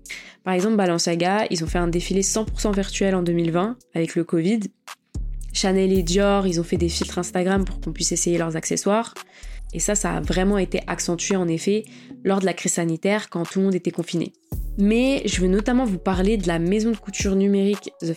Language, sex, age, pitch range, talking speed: French, female, 20-39, 175-210 Hz, 210 wpm